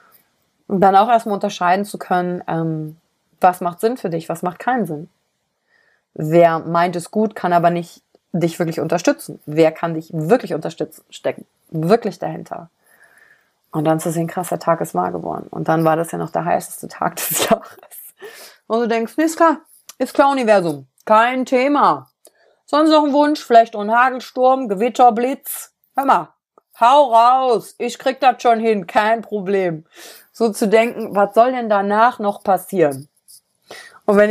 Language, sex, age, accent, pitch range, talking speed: German, female, 30-49, German, 170-230 Hz, 170 wpm